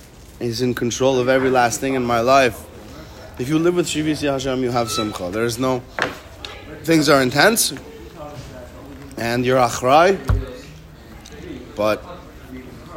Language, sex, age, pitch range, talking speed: English, male, 30-49, 120-150 Hz, 130 wpm